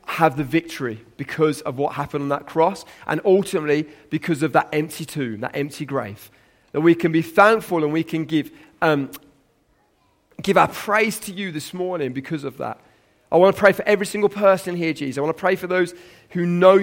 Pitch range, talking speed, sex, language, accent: 160-205 Hz, 205 wpm, male, English, British